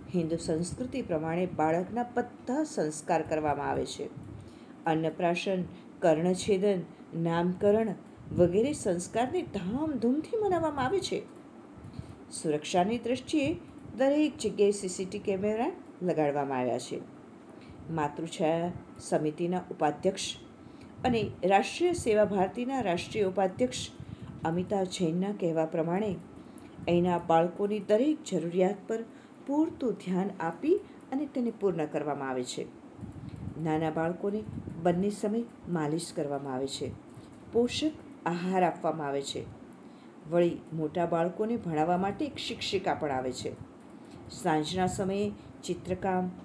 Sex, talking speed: female, 60 wpm